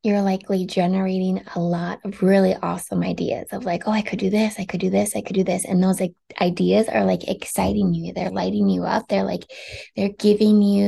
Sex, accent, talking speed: female, American, 220 wpm